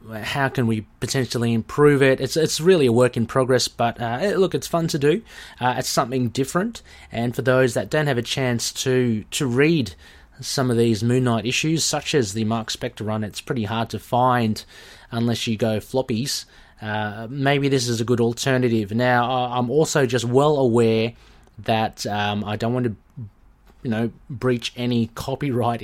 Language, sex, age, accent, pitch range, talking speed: English, male, 30-49, Australian, 110-135 Hz, 185 wpm